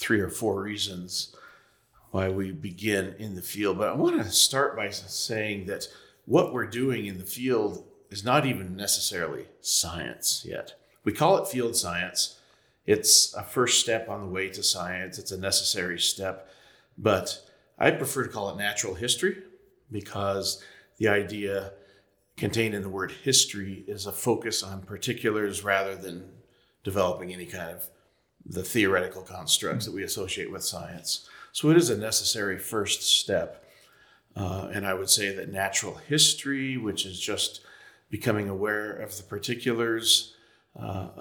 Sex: male